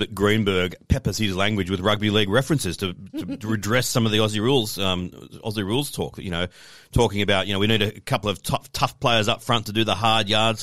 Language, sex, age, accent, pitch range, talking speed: English, male, 40-59, Australian, 85-105 Hz, 235 wpm